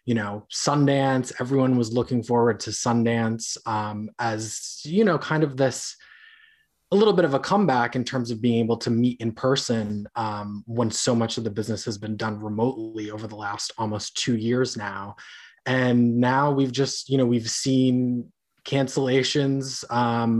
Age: 20-39